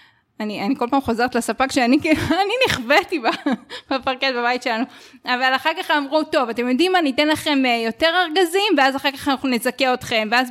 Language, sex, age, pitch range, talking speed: Hebrew, female, 20-39, 240-310 Hz, 175 wpm